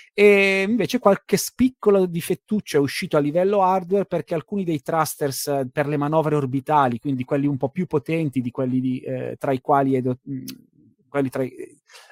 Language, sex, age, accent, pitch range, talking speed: Italian, male, 30-49, native, 130-170 Hz, 135 wpm